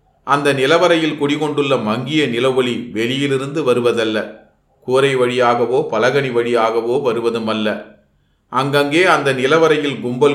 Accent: native